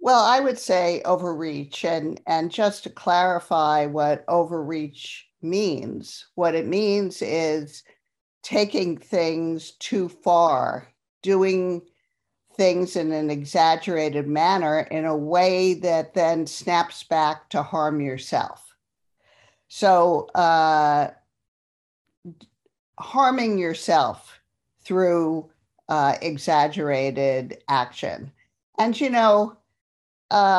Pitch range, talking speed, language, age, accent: 150-185 Hz, 95 wpm, English, 50-69, American